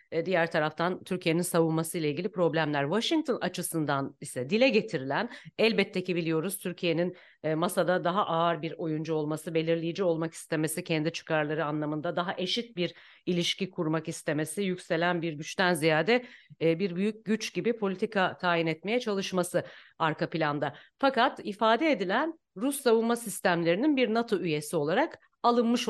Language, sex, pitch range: Turkish, female, 160-215 Hz